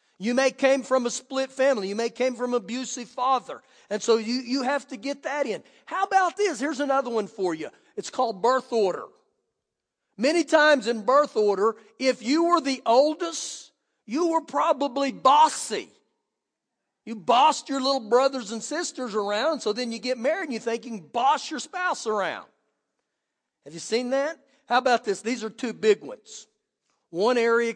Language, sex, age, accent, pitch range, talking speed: English, male, 40-59, American, 220-290 Hz, 185 wpm